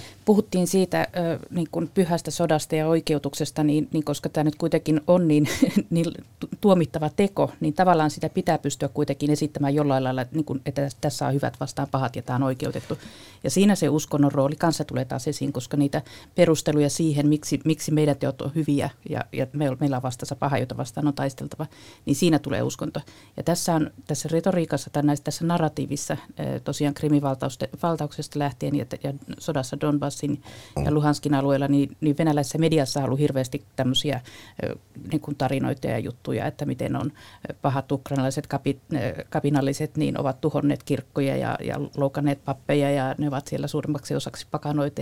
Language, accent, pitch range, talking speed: Finnish, native, 135-155 Hz, 170 wpm